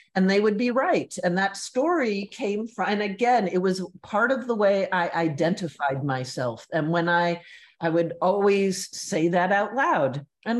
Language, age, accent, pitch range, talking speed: English, 50-69, American, 175-255 Hz, 180 wpm